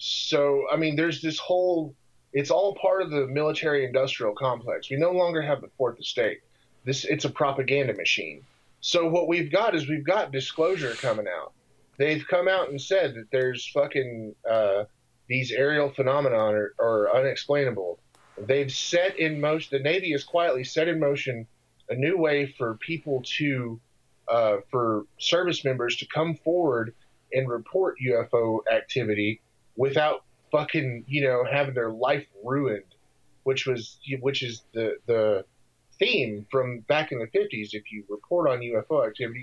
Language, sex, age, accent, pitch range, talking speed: English, male, 30-49, American, 125-160 Hz, 150 wpm